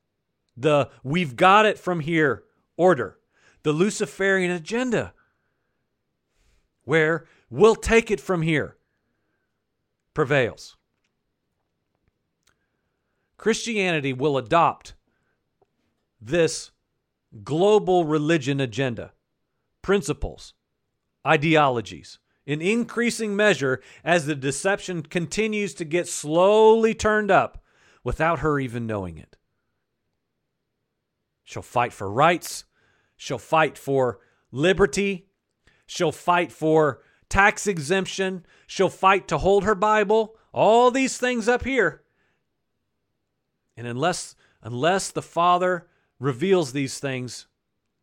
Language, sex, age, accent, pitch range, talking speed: English, male, 40-59, American, 135-195 Hz, 95 wpm